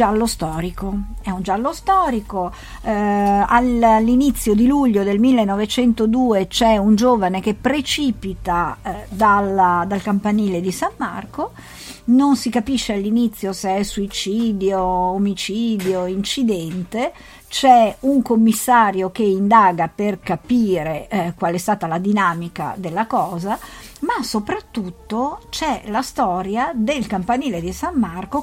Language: Italian